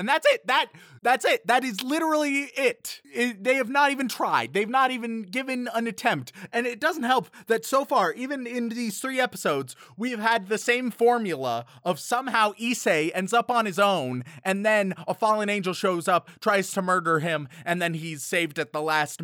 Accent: American